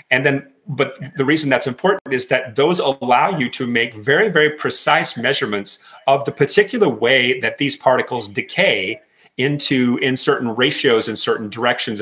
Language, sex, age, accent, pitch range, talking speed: English, male, 40-59, American, 105-150 Hz, 165 wpm